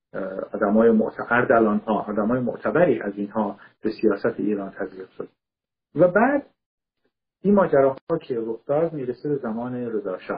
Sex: male